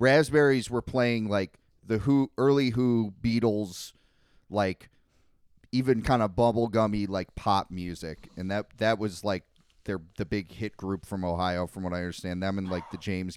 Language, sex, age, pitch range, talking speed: English, male, 30-49, 95-125 Hz, 170 wpm